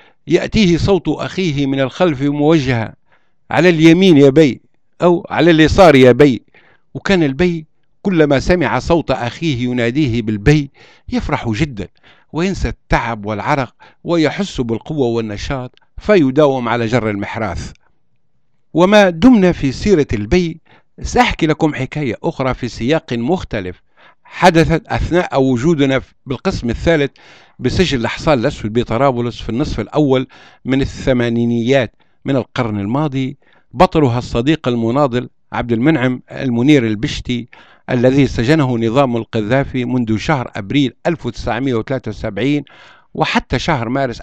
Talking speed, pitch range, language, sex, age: 110 wpm, 120-160 Hz, Arabic, male, 60-79